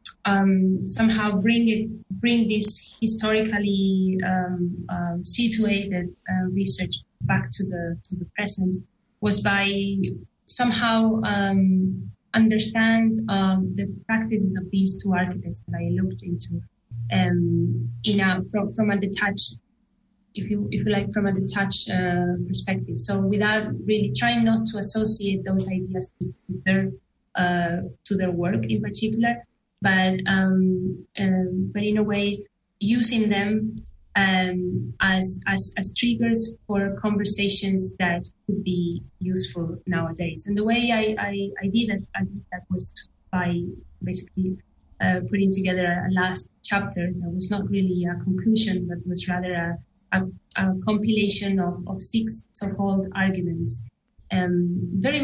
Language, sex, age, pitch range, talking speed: English, female, 20-39, 180-210 Hz, 140 wpm